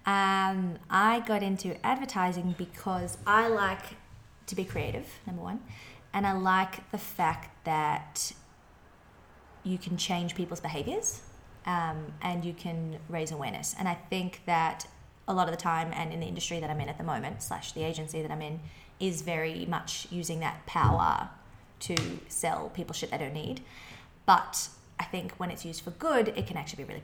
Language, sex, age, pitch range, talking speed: English, female, 20-39, 160-195 Hz, 180 wpm